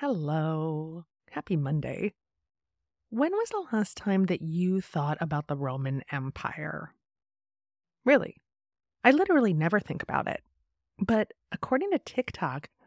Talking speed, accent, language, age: 120 wpm, American, English, 30-49